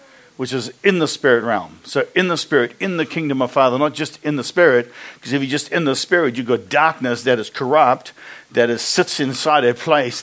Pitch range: 130-175 Hz